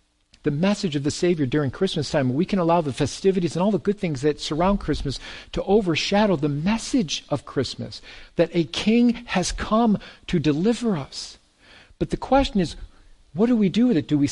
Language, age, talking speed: English, 50-69, 195 wpm